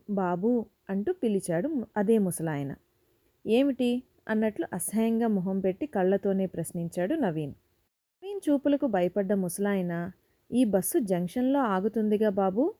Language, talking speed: Telugu, 105 wpm